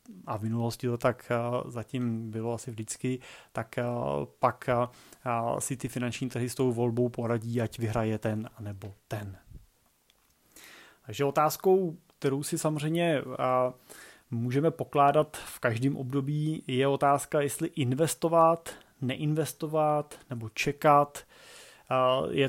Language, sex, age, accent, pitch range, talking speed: Czech, male, 30-49, native, 125-145 Hz, 110 wpm